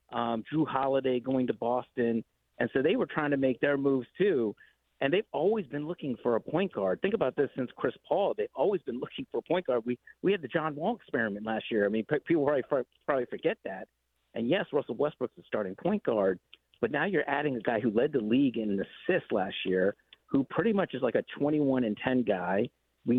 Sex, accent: male, American